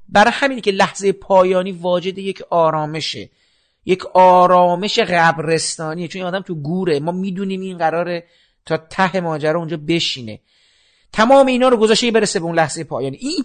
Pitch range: 185-255 Hz